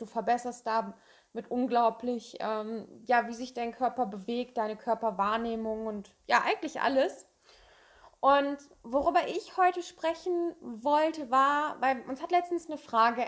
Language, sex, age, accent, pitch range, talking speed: German, female, 20-39, German, 230-260 Hz, 135 wpm